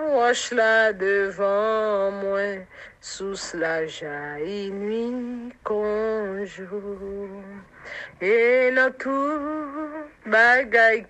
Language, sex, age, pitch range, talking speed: English, female, 50-69, 190-240 Hz, 75 wpm